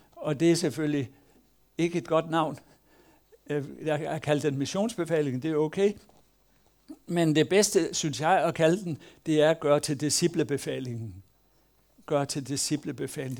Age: 60-79